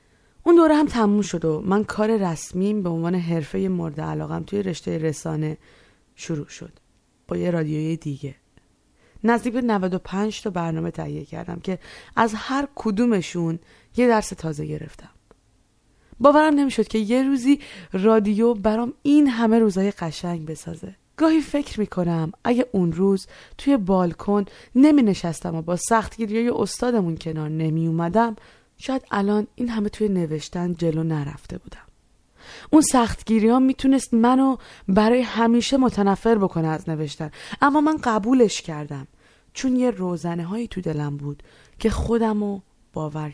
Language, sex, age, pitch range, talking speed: Persian, female, 20-39, 165-235 Hz, 140 wpm